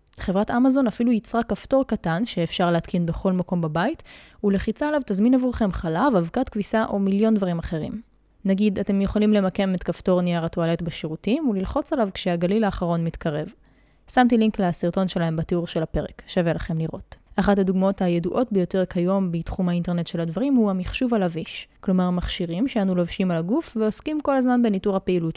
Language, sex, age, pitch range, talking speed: Hebrew, female, 20-39, 175-235 Hz, 165 wpm